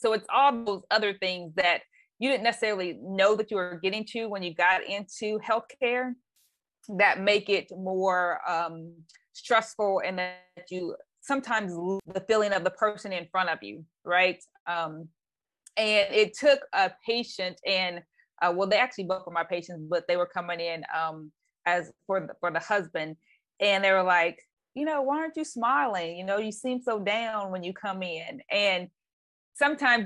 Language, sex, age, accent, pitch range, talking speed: English, female, 20-39, American, 180-220 Hz, 180 wpm